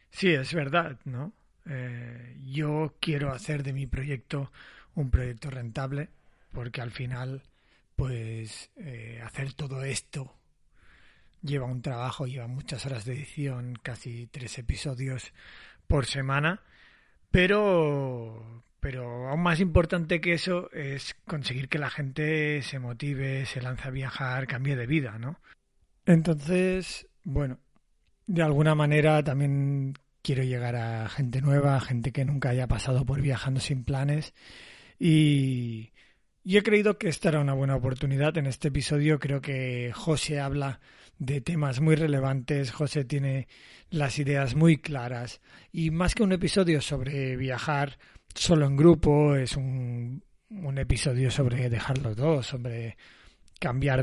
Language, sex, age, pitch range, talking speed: Spanish, male, 30-49, 125-150 Hz, 140 wpm